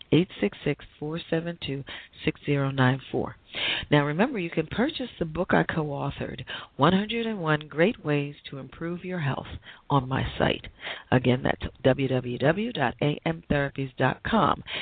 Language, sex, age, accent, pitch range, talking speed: English, female, 40-59, American, 130-165 Hz, 140 wpm